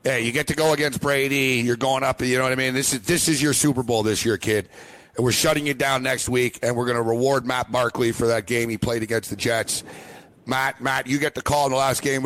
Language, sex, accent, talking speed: English, male, American, 280 wpm